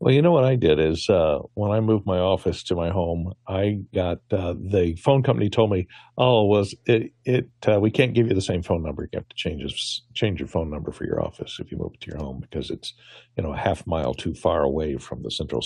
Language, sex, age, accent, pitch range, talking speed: English, male, 60-79, American, 85-115 Hz, 255 wpm